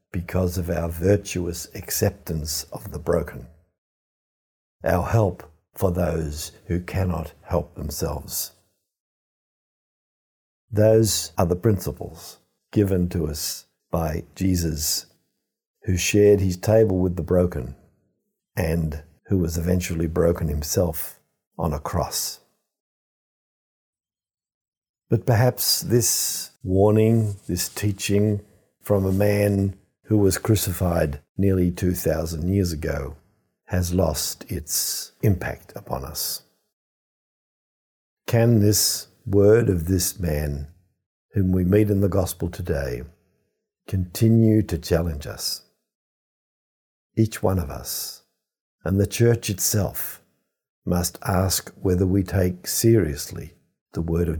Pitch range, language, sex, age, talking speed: 85-100 Hz, English, male, 50-69, 105 wpm